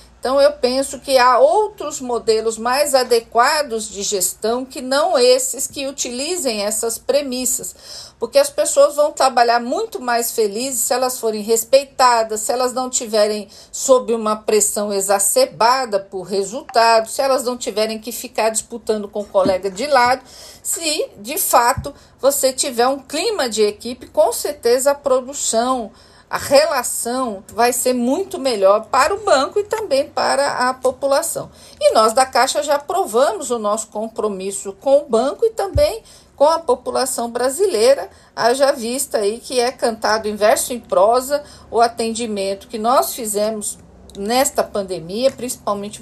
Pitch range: 220-285 Hz